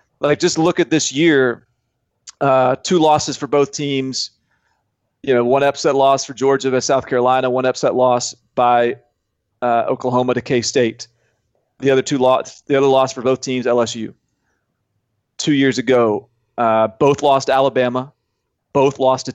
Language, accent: English, American